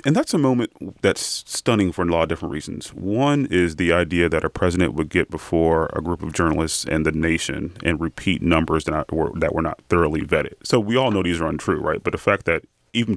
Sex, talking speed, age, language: male, 235 wpm, 30-49, English